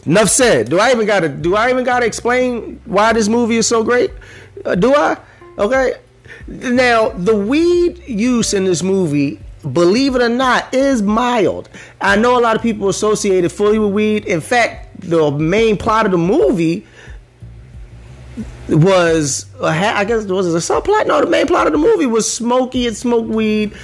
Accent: American